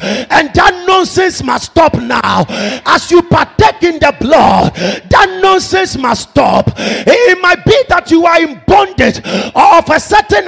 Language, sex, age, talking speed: English, male, 40-59, 160 wpm